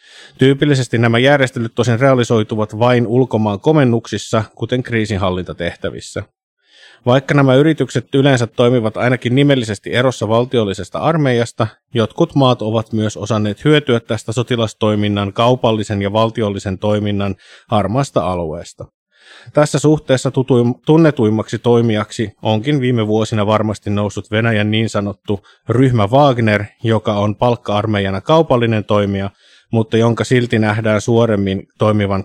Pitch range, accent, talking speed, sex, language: 105-125 Hz, native, 110 wpm, male, Finnish